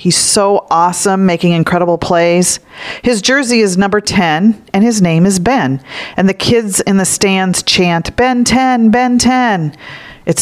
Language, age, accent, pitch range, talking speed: English, 40-59, American, 170-225 Hz, 160 wpm